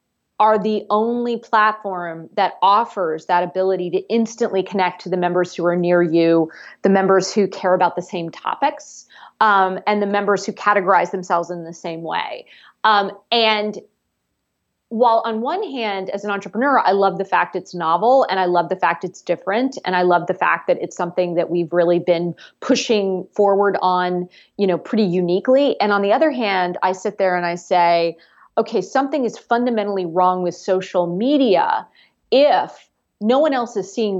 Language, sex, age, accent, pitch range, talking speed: English, female, 30-49, American, 175-215 Hz, 180 wpm